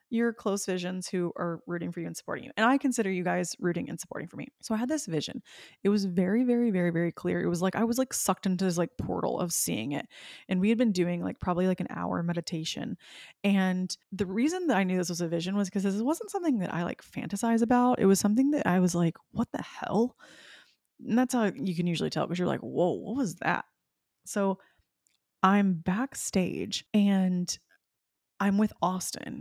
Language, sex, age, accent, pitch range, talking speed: English, female, 20-39, American, 175-210 Hz, 220 wpm